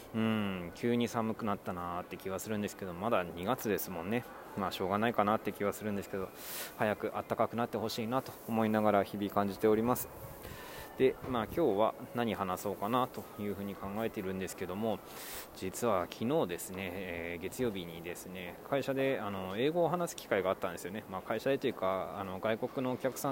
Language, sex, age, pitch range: Japanese, male, 20-39, 100-130 Hz